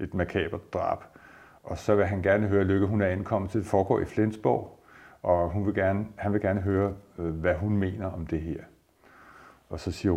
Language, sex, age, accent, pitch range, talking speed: Danish, male, 50-69, native, 95-120 Hz, 210 wpm